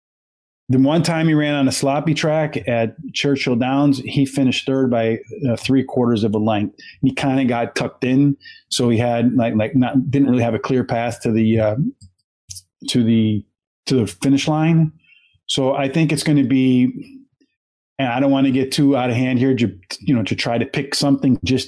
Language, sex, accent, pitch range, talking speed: English, male, American, 115-140 Hz, 210 wpm